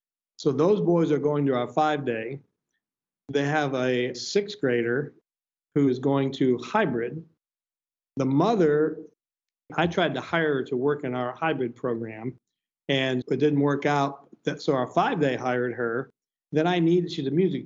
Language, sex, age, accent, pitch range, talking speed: English, male, 50-69, American, 130-155 Hz, 160 wpm